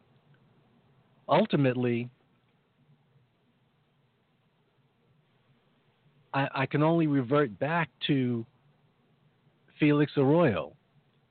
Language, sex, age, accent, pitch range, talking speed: English, male, 50-69, American, 115-145 Hz, 55 wpm